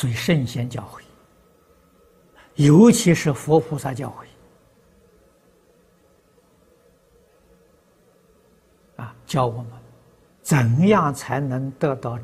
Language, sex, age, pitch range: Chinese, male, 60-79, 125-155 Hz